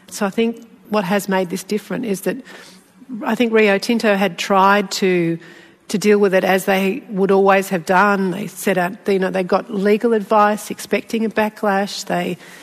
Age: 40-59